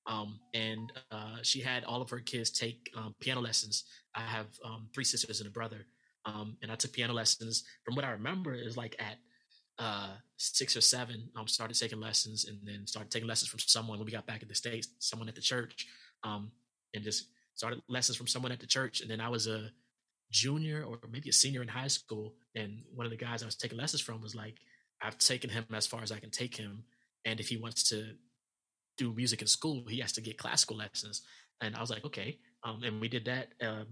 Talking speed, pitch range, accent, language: 230 wpm, 110-120 Hz, American, English